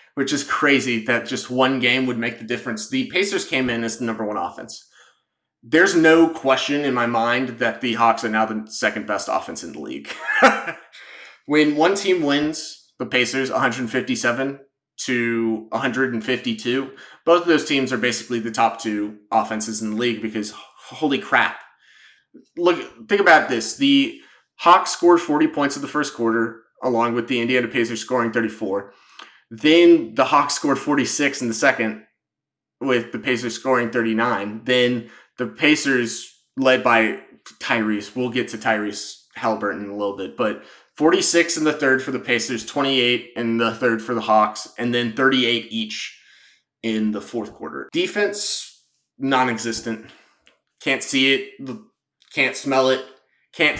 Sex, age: male, 30-49